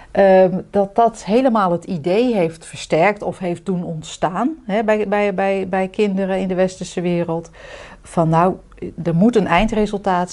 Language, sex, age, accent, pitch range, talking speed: Dutch, female, 40-59, Dutch, 160-205 Hz, 145 wpm